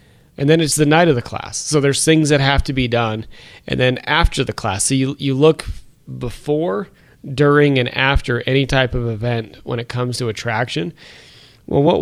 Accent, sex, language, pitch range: American, male, English, 120-145 Hz